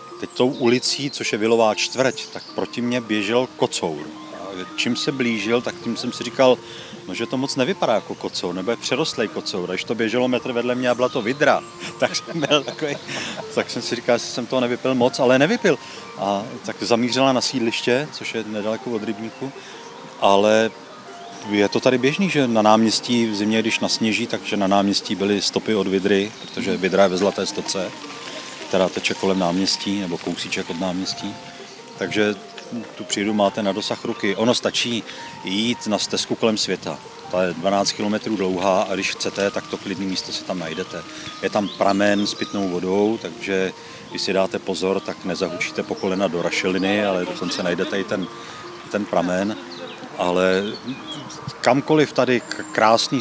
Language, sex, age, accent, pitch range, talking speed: Czech, male, 40-59, native, 95-120 Hz, 175 wpm